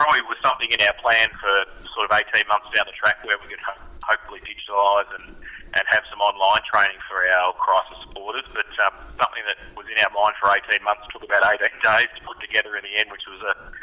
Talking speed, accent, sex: 235 wpm, Australian, male